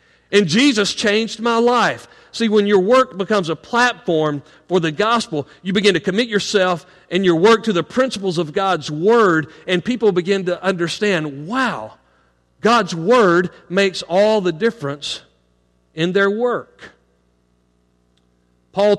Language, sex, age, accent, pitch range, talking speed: English, male, 40-59, American, 150-215 Hz, 140 wpm